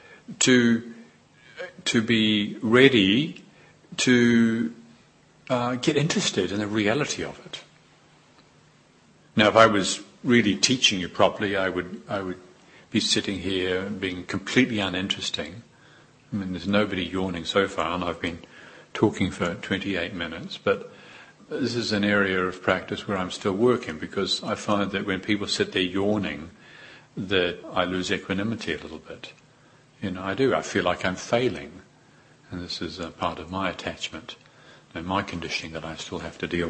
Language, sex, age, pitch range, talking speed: English, male, 50-69, 95-125 Hz, 160 wpm